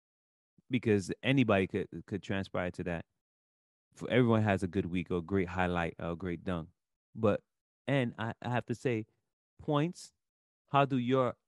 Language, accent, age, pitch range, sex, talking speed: English, American, 30-49, 95-120 Hz, male, 165 wpm